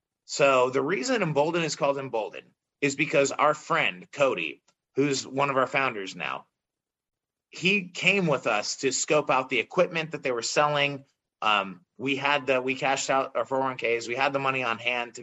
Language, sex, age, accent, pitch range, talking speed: English, male, 30-49, American, 125-150 Hz, 185 wpm